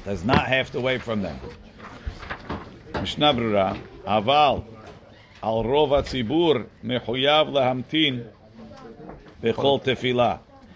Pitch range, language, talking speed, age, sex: 115-140 Hz, English, 95 wpm, 50-69, male